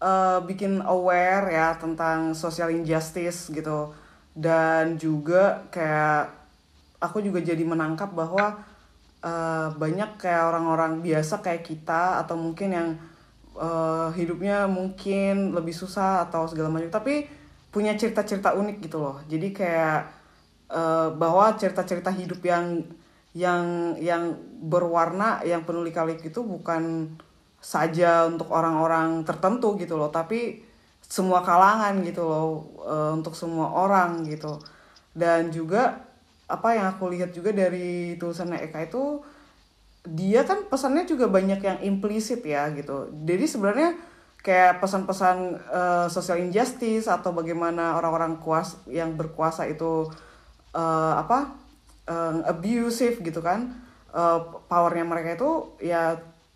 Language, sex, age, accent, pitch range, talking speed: Indonesian, female, 20-39, native, 160-190 Hz, 120 wpm